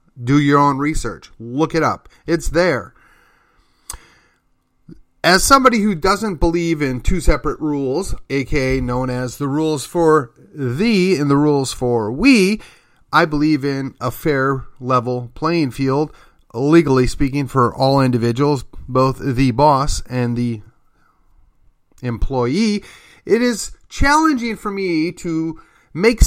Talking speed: 130 wpm